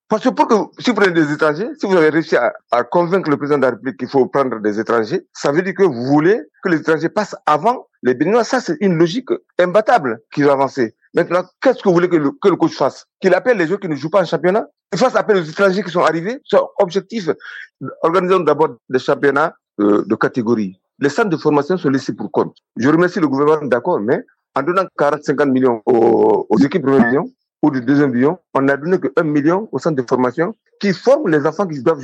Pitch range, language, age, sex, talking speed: 145-205 Hz, French, 50-69, male, 240 wpm